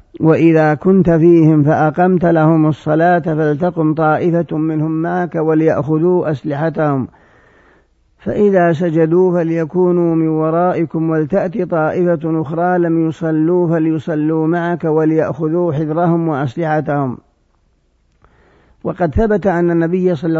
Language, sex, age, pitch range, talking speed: Arabic, male, 50-69, 155-175 Hz, 95 wpm